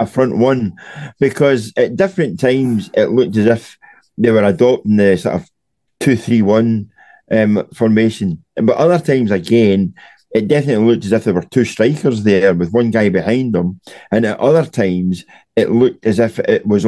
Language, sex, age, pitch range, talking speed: English, male, 50-69, 105-125 Hz, 180 wpm